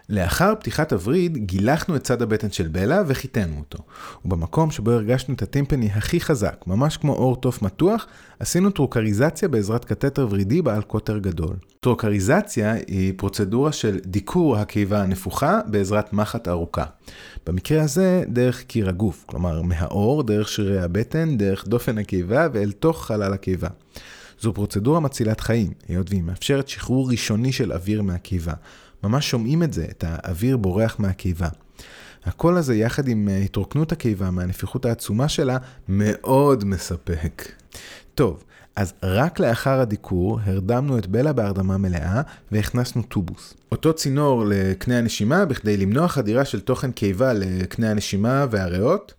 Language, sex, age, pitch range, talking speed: Hebrew, male, 30-49, 95-130 Hz, 140 wpm